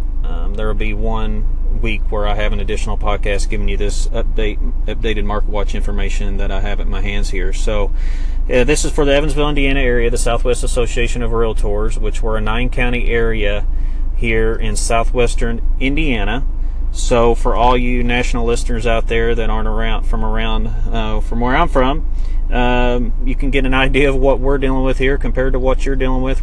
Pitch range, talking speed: 110-130 Hz, 195 wpm